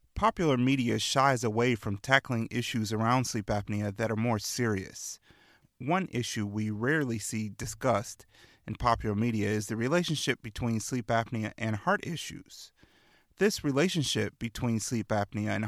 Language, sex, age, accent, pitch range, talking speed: English, male, 30-49, American, 110-135 Hz, 145 wpm